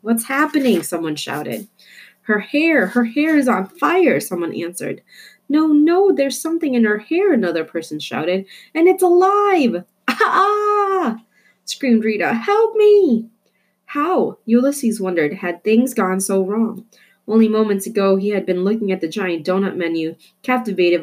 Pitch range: 175-245 Hz